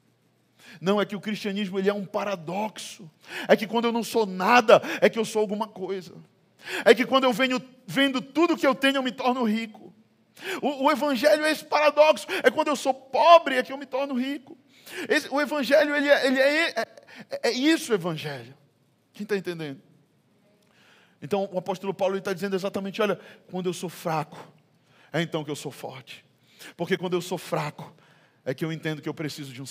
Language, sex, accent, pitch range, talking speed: Portuguese, male, Brazilian, 185-265 Hz, 190 wpm